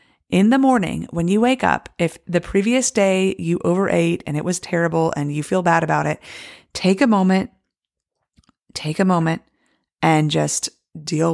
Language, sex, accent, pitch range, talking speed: English, female, American, 160-215 Hz, 170 wpm